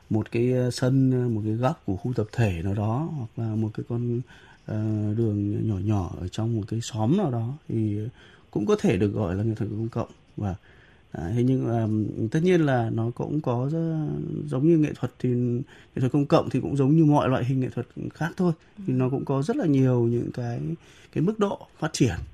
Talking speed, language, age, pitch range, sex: 225 wpm, Vietnamese, 20-39, 110-135 Hz, male